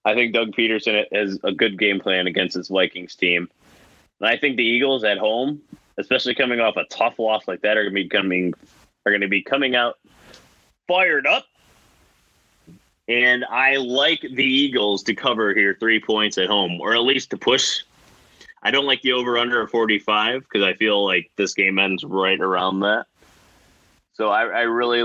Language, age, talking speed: English, 20-39, 195 wpm